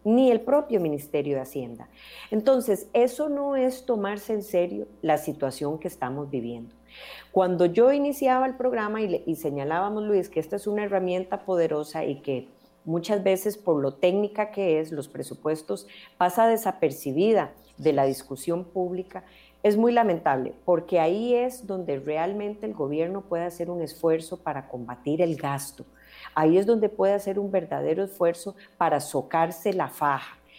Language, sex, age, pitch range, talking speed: Spanish, female, 40-59, 155-210 Hz, 160 wpm